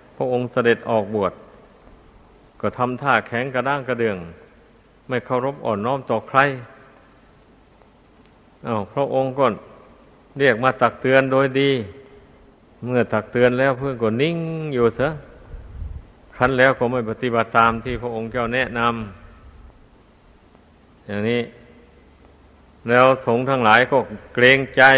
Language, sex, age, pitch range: Thai, male, 60-79, 100-130 Hz